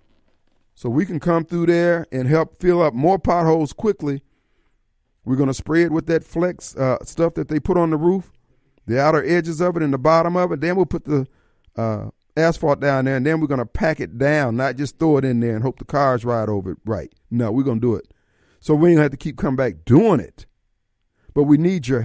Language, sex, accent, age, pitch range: Japanese, male, American, 50-69, 120-175 Hz